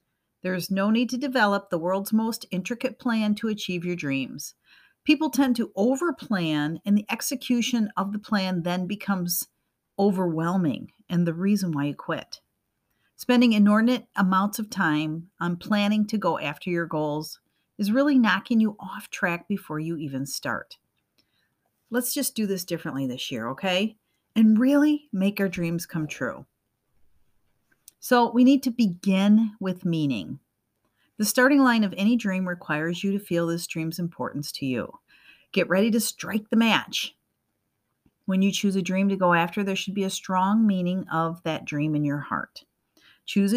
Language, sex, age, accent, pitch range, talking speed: English, female, 50-69, American, 170-220 Hz, 165 wpm